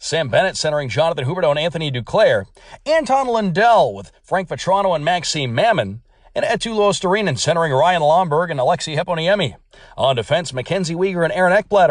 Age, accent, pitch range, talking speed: 40-59, American, 150-200 Hz, 160 wpm